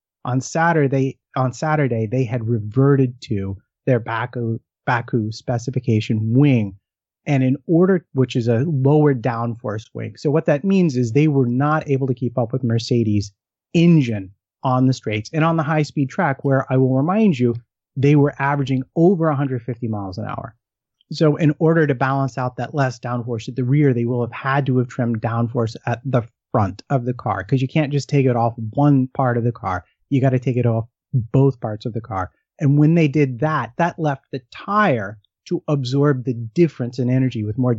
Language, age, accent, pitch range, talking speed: English, 30-49, American, 120-145 Hz, 195 wpm